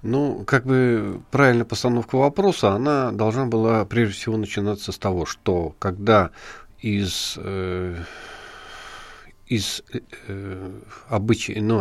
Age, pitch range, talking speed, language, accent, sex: 50-69, 95-120 Hz, 110 wpm, Russian, native, male